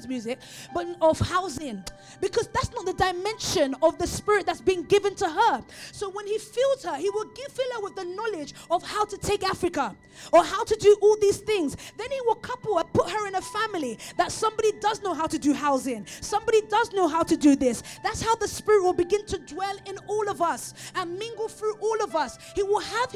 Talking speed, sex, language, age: 230 wpm, female, English, 20-39